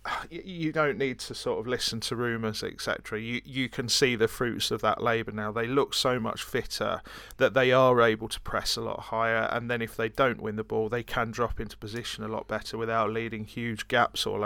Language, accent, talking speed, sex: English, British, 230 wpm, male